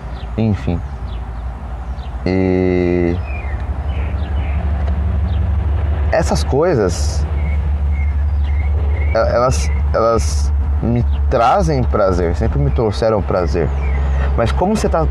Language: Portuguese